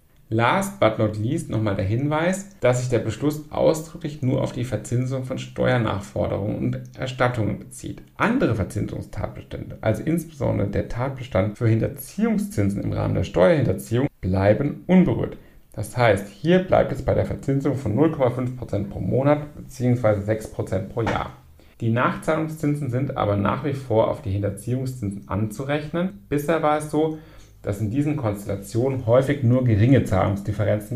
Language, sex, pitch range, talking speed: German, male, 105-130 Hz, 145 wpm